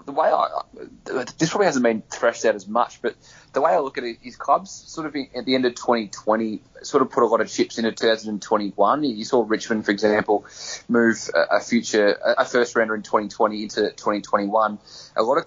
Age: 20-39